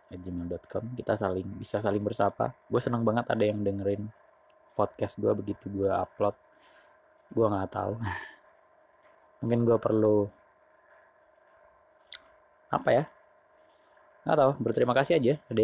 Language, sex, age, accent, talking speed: Indonesian, male, 20-39, native, 120 wpm